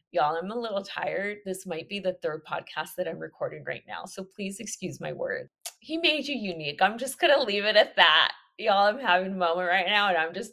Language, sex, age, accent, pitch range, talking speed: English, female, 20-39, American, 175-240 Hz, 245 wpm